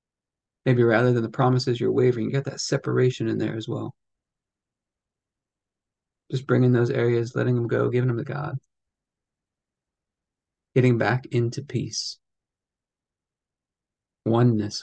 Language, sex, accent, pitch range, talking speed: English, male, American, 110-125 Hz, 125 wpm